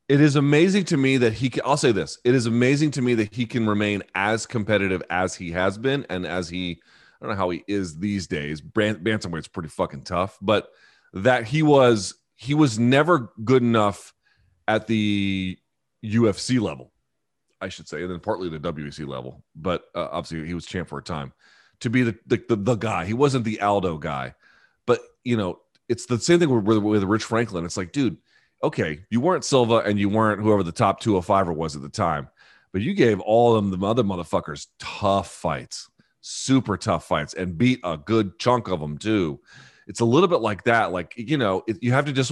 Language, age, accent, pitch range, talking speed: English, 30-49, American, 95-125 Hz, 210 wpm